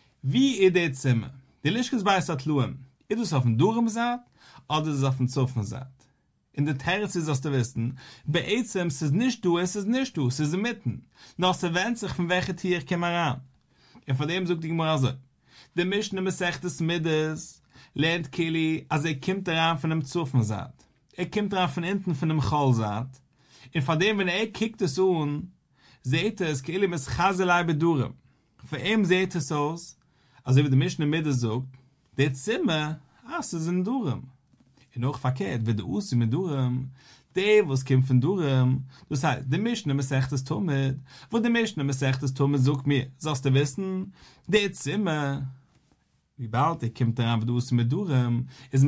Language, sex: English, male